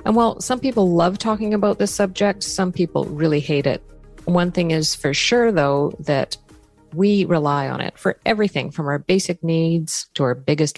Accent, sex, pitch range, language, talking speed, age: American, female, 145-190 Hz, English, 190 wpm, 40-59